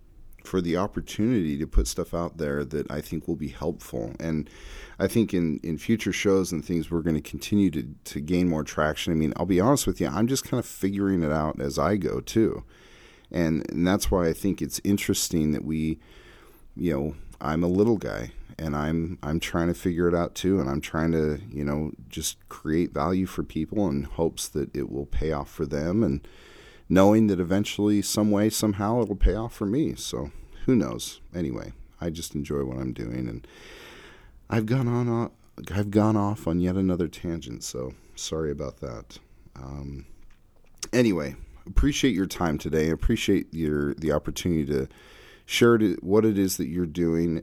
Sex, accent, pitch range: male, American, 75-100 Hz